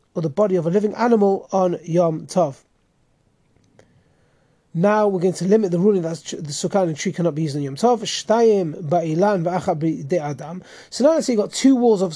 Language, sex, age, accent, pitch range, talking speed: English, male, 30-49, British, 165-210 Hz, 190 wpm